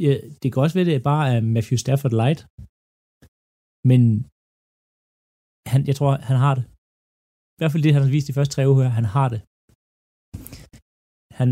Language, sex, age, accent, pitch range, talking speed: Danish, male, 30-49, native, 110-145 Hz, 175 wpm